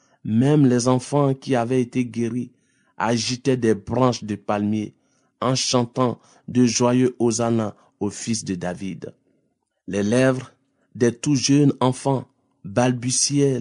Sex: male